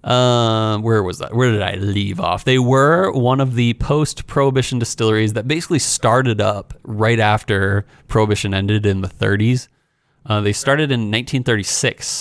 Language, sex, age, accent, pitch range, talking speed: English, male, 30-49, American, 110-140 Hz, 155 wpm